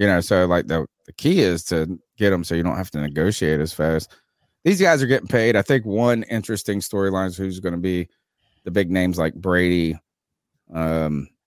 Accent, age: American, 30-49